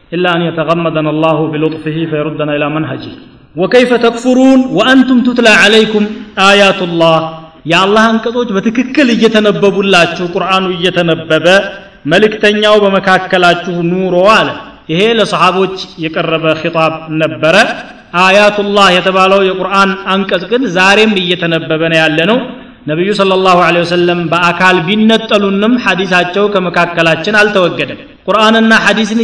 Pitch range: 170-210 Hz